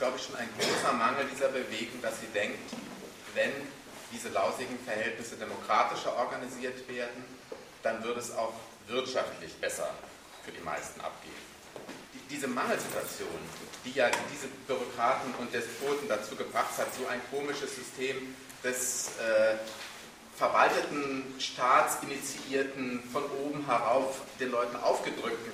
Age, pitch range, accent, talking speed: 40-59, 120-135 Hz, German, 125 wpm